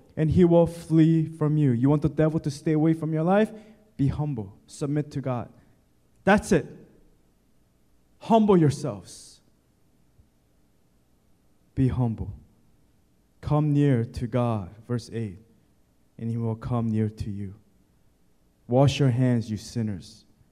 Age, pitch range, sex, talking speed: 20-39, 110-140 Hz, male, 130 wpm